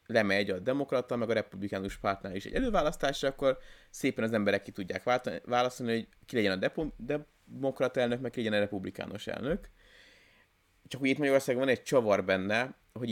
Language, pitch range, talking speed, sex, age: Hungarian, 100-120 Hz, 180 wpm, male, 20-39